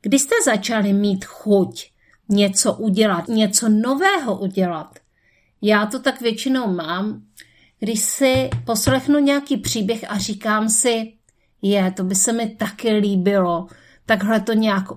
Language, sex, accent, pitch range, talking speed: Czech, female, native, 190-225 Hz, 130 wpm